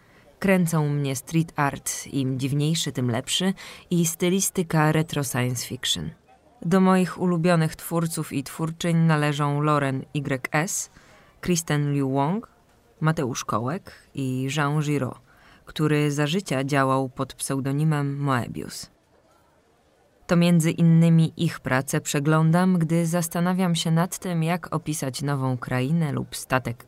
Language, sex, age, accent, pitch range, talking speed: Polish, female, 20-39, native, 135-165 Hz, 120 wpm